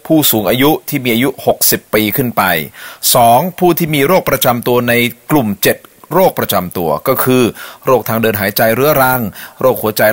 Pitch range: 110-145 Hz